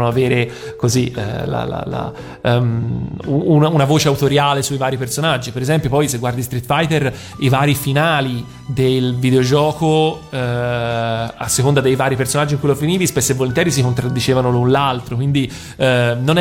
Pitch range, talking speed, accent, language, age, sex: 120-140 Hz, 155 wpm, native, Italian, 30-49, male